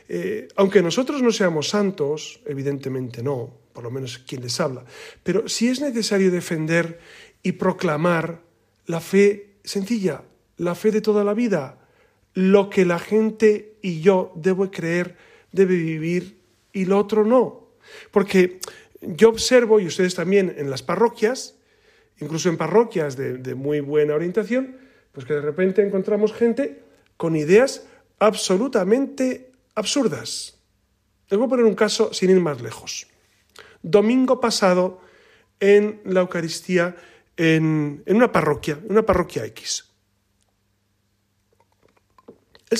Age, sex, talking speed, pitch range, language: 40-59, male, 135 wpm, 150-215 Hz, Spanish